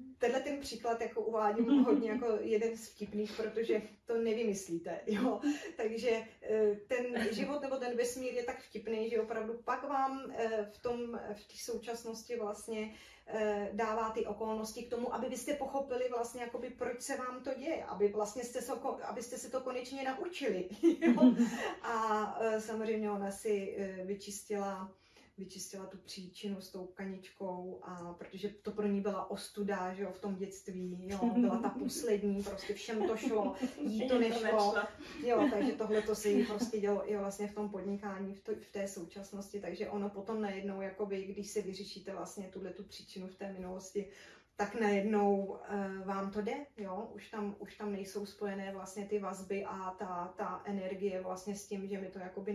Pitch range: 200-235 Hz